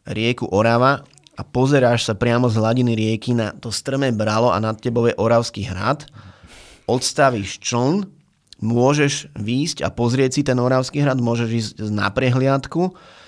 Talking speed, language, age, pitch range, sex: 150 wpm, Slovak, 30-49, 110-130 Hz, male